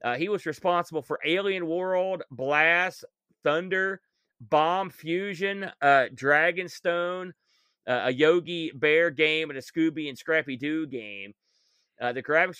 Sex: male